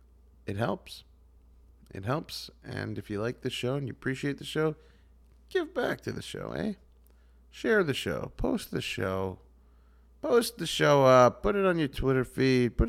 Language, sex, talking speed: English, male, 175 wpm